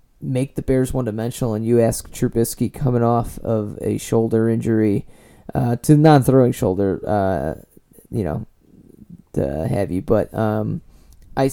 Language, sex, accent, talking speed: English, male, American, 140 wpm